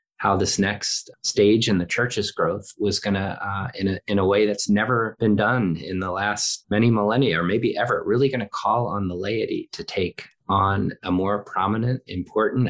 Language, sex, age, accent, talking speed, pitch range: English, male, 30-49, American, 195 wpm, 100-125 Hz